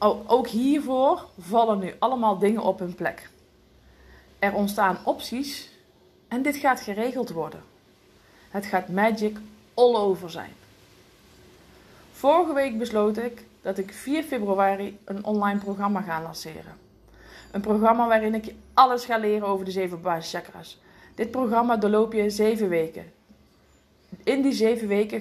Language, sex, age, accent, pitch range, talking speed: Dutch, female, 20-39, Dutch, 185-225 Hz, 140 wpm